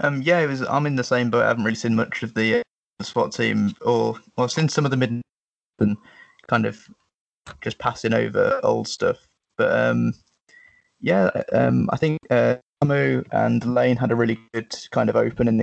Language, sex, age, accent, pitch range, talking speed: English, male, 20-39, British, 115-140 Hz, 190 wpm